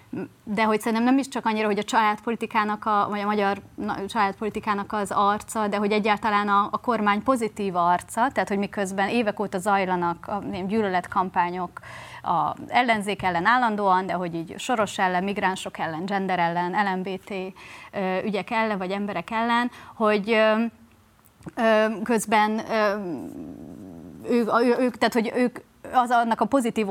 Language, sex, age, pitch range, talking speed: Hungarian, female, 30-49, 190-220 Hz, 135 wpm